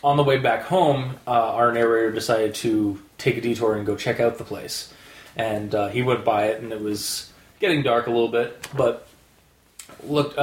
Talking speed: 200 wpm